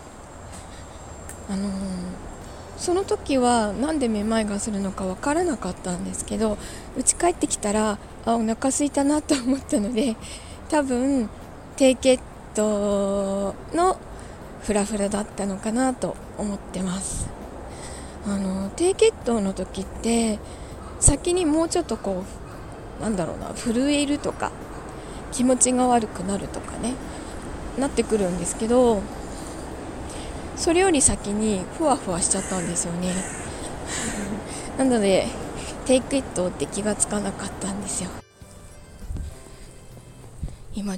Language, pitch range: Japanese, 180-245 Hz